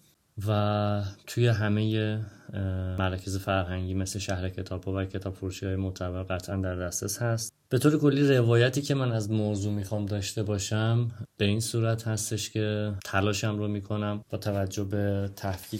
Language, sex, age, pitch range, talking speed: Persian, male, 30-49, 95-110 Hz, 155 wpm